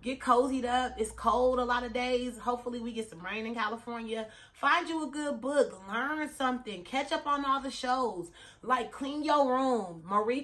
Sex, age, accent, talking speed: female, 30-49, American, 195 wpm